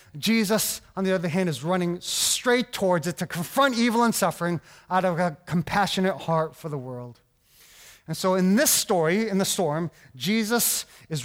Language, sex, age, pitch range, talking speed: English, male, 30-49, 170-225 Hz, 175 wpm